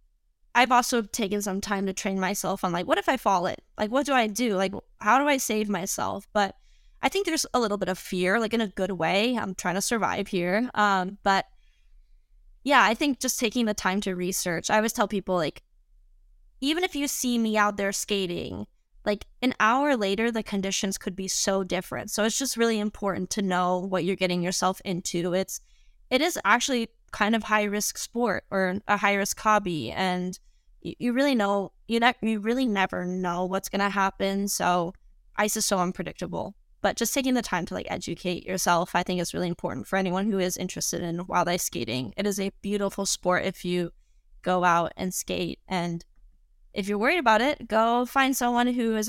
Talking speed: 205 wpm